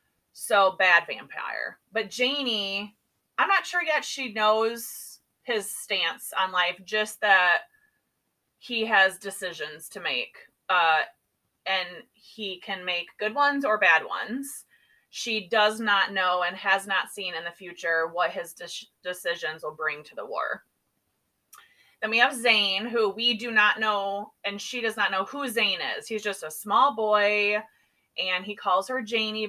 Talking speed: 160 wpm